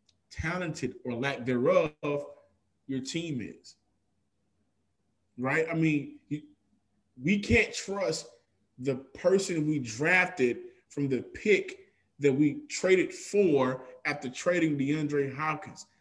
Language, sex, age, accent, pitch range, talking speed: English, male, 20-39, American, 125-185 Hz, 105 wpm